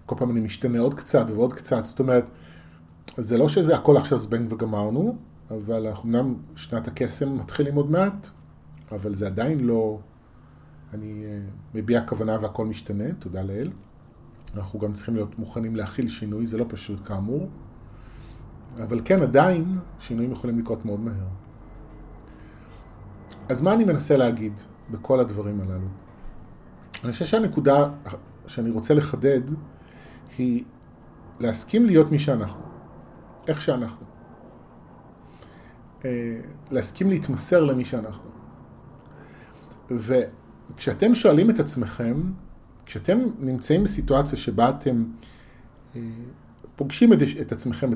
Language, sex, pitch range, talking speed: Hebrew, male, 105-140 Hz, 115 wpm